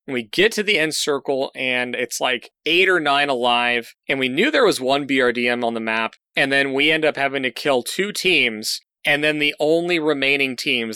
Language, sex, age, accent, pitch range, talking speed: English, male, 20-39, American, 130-170 Hz, 215 wpm